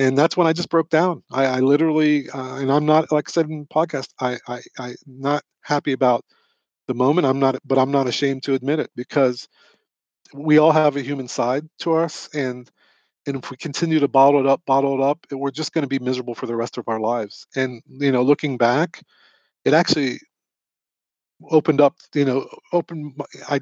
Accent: American